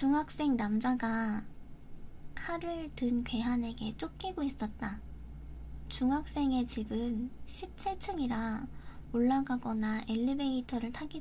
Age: 10-29